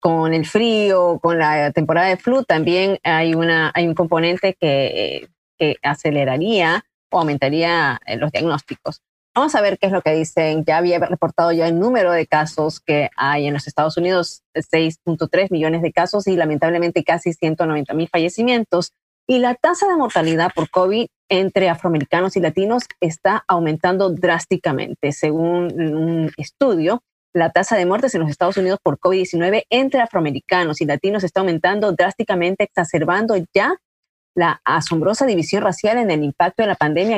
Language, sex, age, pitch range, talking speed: Spanish, female, 30-49, 160-195 Hz, 160 wpm